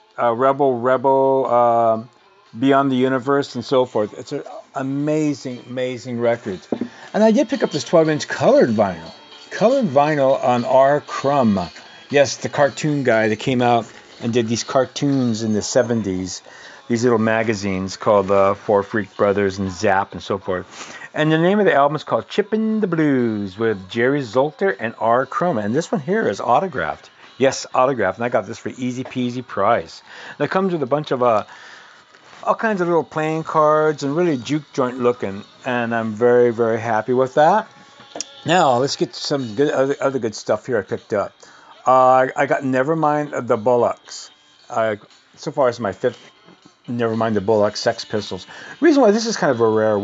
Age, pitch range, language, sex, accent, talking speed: 40-59, 115-150 Hz, English, male, American, 180 wpm